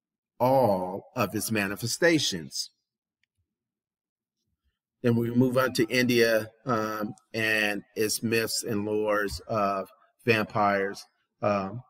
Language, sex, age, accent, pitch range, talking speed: English, male, 40-59, American, 105-125 Hz, 95 wpm